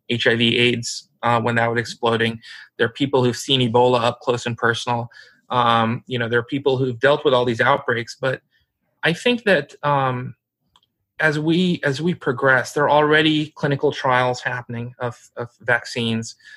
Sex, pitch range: male, 125-150 Hz